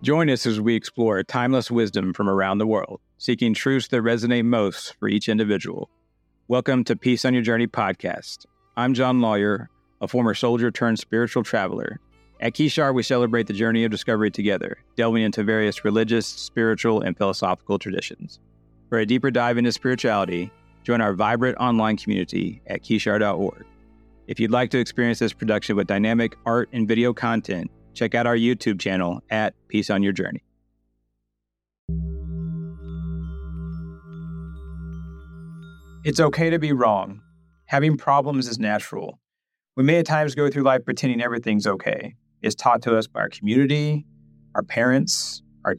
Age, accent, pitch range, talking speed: 40-59, American, 95-125 Hz, 155 wpm